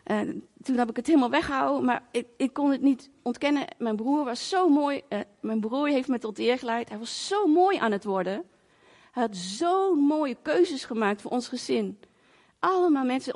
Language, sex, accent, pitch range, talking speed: Dutch, female, Dutch, 220-290 Hz, 200 wpm